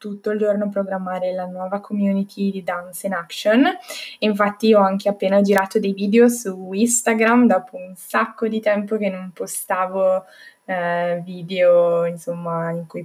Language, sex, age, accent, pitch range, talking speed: Italian, female, 10-29, native, 185-220 Hz, 155 wpm